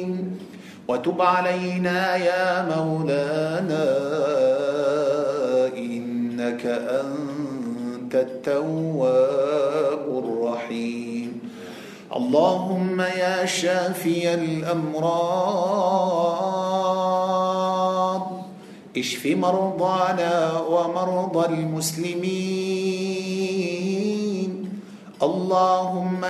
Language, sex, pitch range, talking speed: Malay, male, 175-200 Hz, 40 wpm